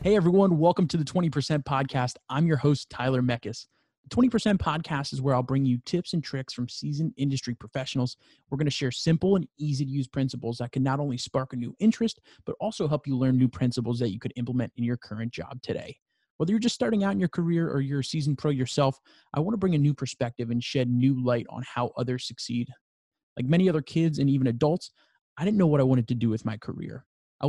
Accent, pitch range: American, 125-150 Hz